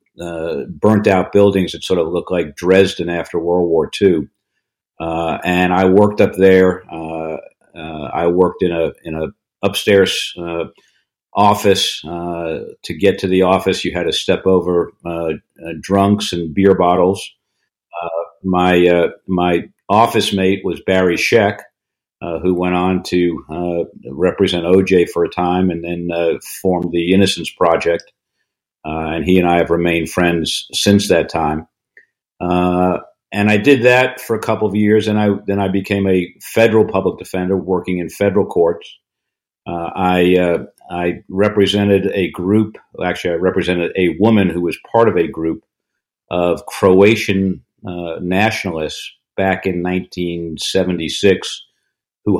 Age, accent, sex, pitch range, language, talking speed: 50-69, American, male, 85-100 Hz, English, 150 wpm